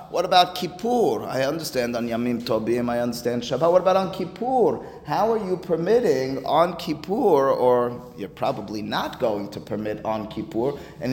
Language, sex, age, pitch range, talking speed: English, male, 30-49, 130-165 Hz, 165 wpm